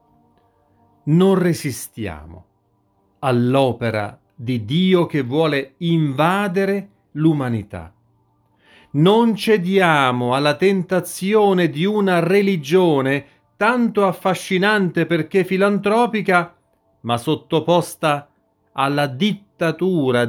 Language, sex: Italian, male